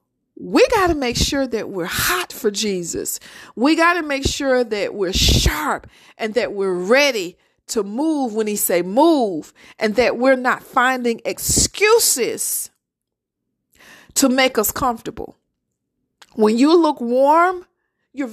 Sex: female